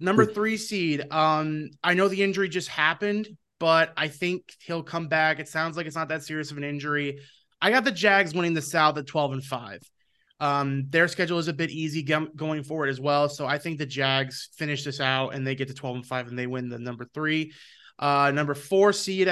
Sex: male